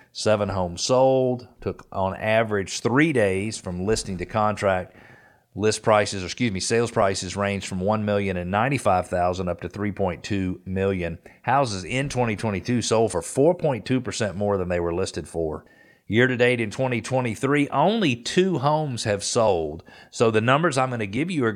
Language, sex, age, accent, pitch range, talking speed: English, male, 40-59, American, 95-120 Hz, 155 wpm